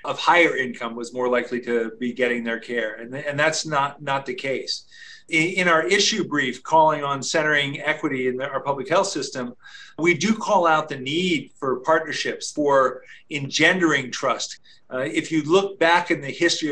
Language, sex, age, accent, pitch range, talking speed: English, male, 40-59, American, 135-165 Hz, 185 wpm